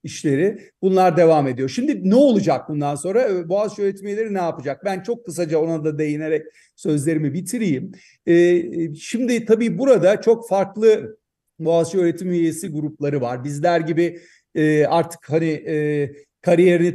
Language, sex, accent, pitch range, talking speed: Turkish, male, native, 150-190 Hz, 140 wpm